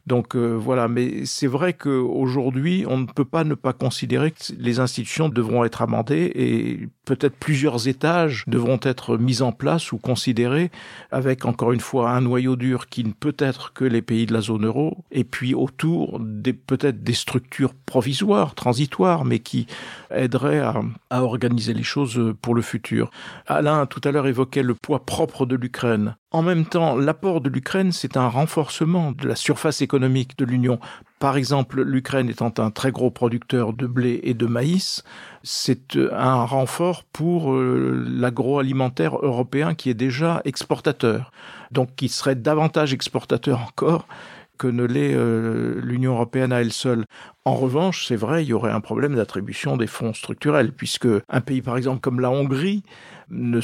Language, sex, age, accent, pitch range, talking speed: French, male, 50-69, French, 120-145 Hz, 170 wpm